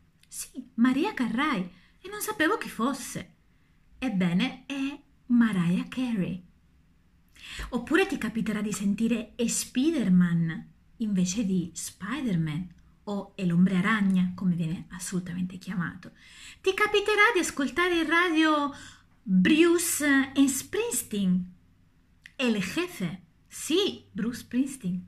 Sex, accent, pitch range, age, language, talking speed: female, native, 180-275 Hz, 30-49, Italian, 105 wpm